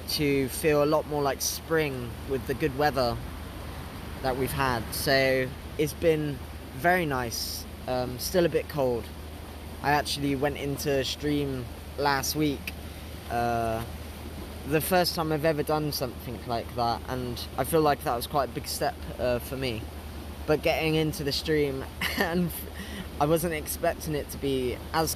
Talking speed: 160 wpm